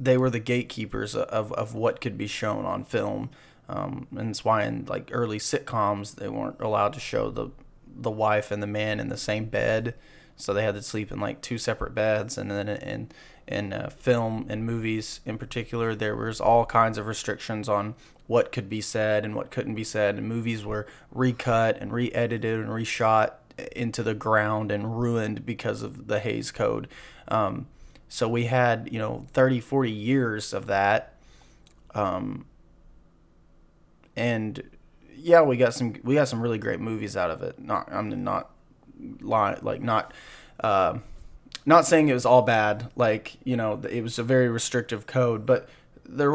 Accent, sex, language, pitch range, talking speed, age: American, male, English, 105-125 Hz, 180 wpm, 20-39